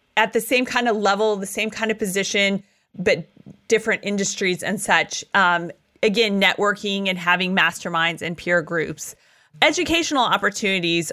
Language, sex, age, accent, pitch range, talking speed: English, female, 30-49, American, 195-230 Hz, 145 wpm